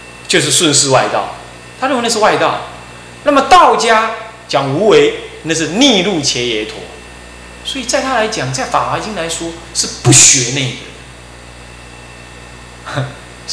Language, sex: Chinese, male